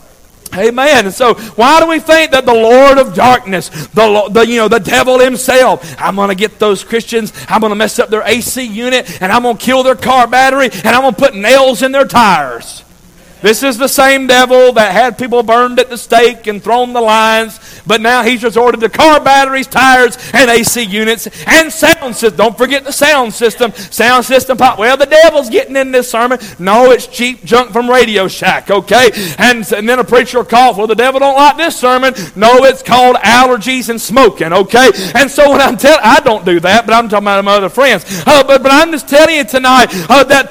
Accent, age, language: American, 50-69, English